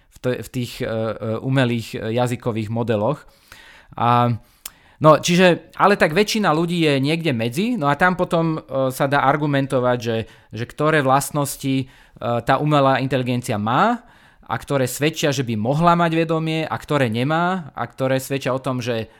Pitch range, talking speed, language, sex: 125-155 Hz, 145 wpm, Slovak, male